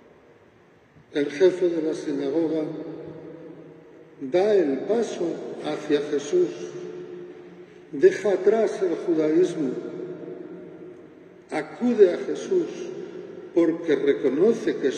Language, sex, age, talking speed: Spanish, male, 60-79, 80 wpm